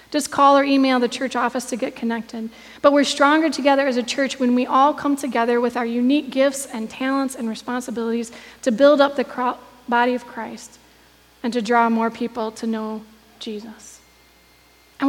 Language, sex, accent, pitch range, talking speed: English, female, American, 235-275 Hz, 185 wpm